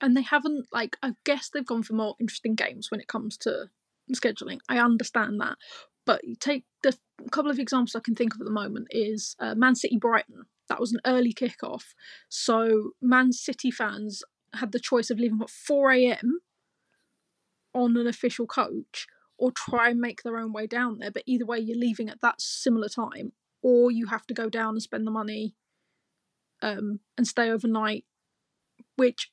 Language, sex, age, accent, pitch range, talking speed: English, female, 20-39, British, 225-260 Hz, 185 wpm